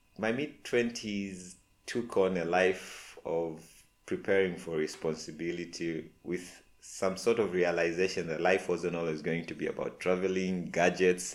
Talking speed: 130 wpm